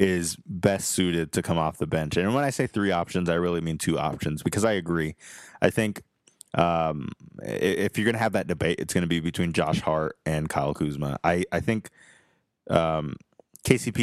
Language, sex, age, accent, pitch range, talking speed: English, male, 20-39, American, 85-105 Hz, 200 wpm